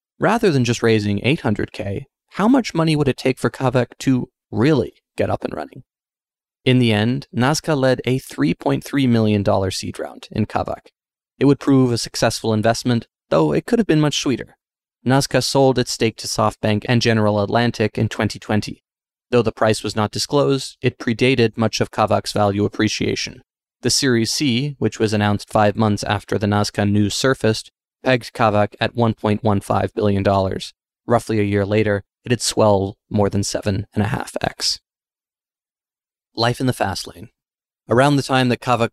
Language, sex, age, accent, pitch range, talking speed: English, male, 20-39, American, 105-130 Hz, 165 wpm